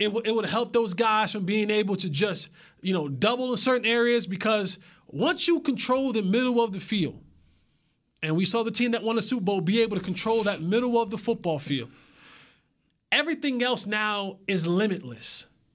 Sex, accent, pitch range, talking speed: male, American, 180-235 Hz, 200 wpm